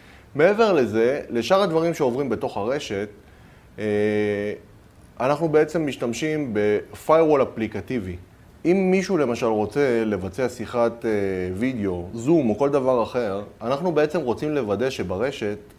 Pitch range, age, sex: 105-160 Hz, 30-49, male